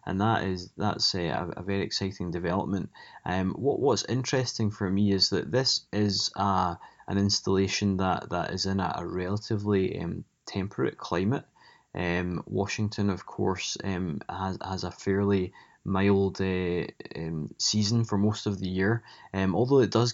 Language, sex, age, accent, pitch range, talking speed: English, male, 20-39, British, 95-110 Hz, 160 wpm